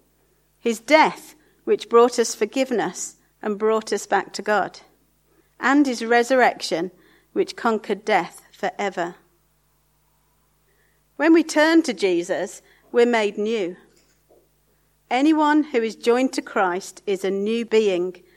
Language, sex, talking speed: English, female, 120 wpm